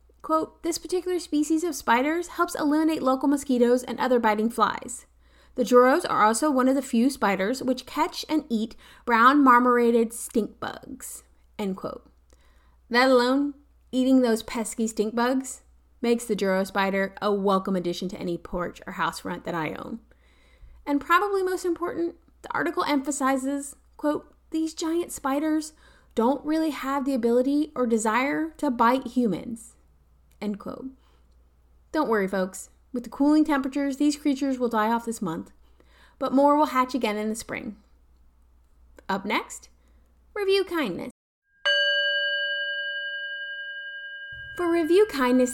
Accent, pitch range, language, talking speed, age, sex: American, 215-300 Hz, English, 140 wpm, 30-49, female